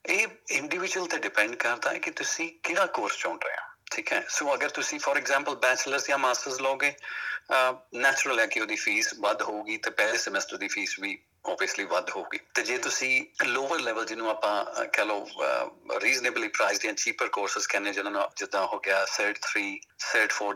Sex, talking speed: male, 185 wpm